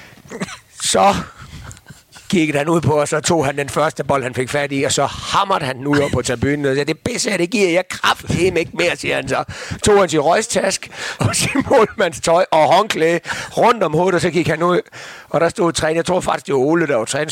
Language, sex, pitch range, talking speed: Danish, male, 130-170 Hz, 245 wpm